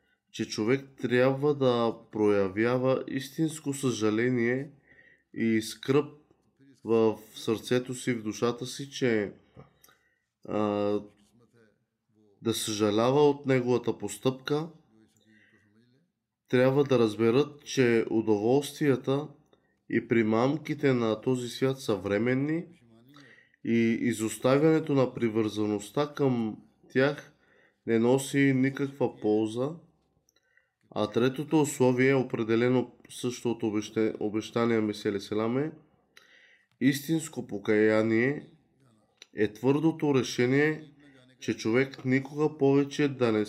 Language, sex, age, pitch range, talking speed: Bulgarian, male, 20-39, 110-135 Hz, 90 wpm